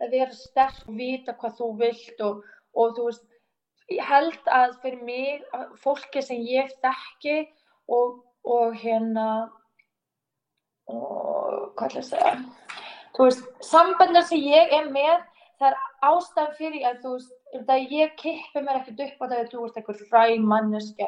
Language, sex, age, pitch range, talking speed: English, female, 20-39, 230-275 Hz, 135 wpm